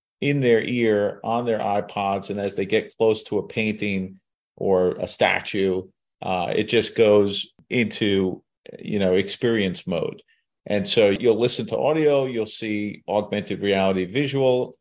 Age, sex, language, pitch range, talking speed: 40-59, male, English, 95-120 Hz, 150 wpm